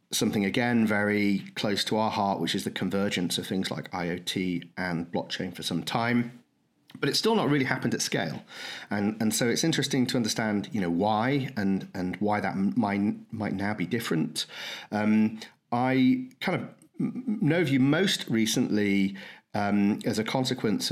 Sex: male